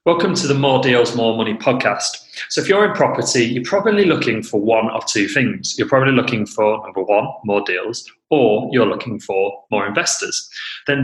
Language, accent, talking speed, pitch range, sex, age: English, British, 195 wpm, 110-140 Hz, male, 30-49